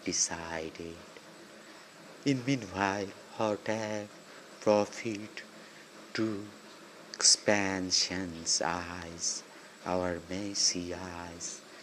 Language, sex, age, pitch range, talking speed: Bengali, male, 60-79, 90-110 Hz, 60 wpm